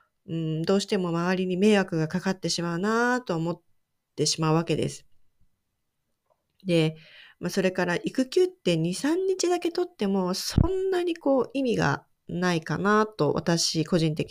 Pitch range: 170-230 Hz